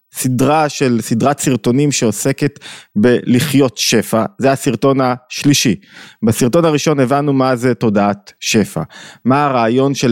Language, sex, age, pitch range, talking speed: Hebrew, male, 20-39, 110-140 Hz, 120 wpm